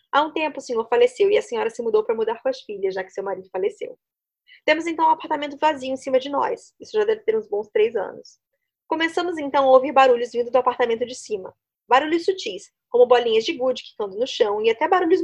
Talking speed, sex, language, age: 235 wpm, female, Portuguese, 20-39